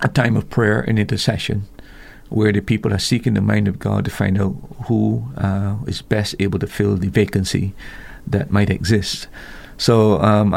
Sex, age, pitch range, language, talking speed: male, 50-69, 100-115 Hz, English, 180 wpm